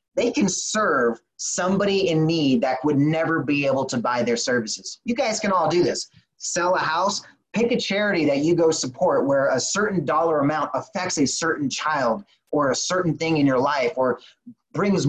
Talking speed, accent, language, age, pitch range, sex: 195 wpm, American, English, 30-49, 135-180 Hz, male